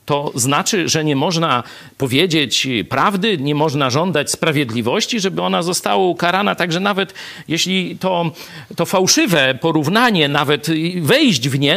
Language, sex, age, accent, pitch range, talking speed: Polish, male, 50-69, native, 135-205 Hz, 135 wpm